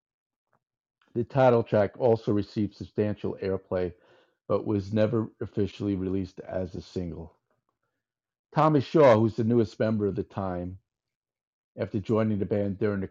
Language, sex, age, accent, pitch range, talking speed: English, male, 50-69, American, 90-110 Hz, 135 wpm